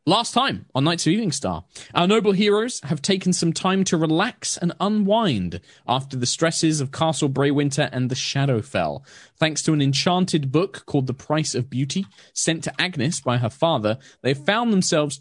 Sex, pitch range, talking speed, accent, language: male, 125-170 Hz, 180 wpm, British, English